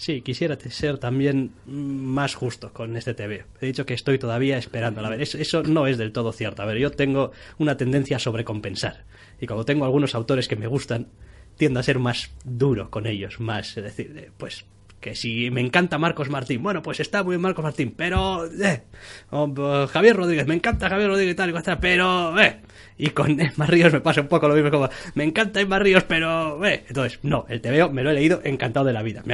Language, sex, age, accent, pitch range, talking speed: Spanish, male, 20-39, Spanish, 115-155 Hz, 225 wpm